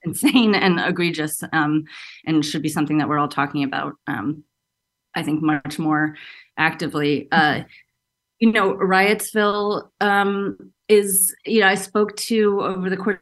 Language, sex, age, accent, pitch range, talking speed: English, female, 30-49, American, 155-190 Hz, 150 wpm